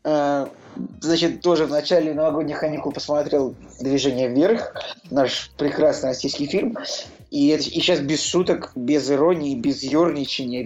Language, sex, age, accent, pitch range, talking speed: Russian, male, 20-39, native, 135-160 Hz, 125 wpm